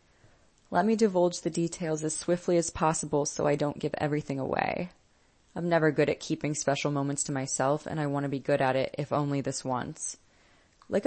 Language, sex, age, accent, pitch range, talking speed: English, female, 20-39, American, 145-165 Hz, 200 wpm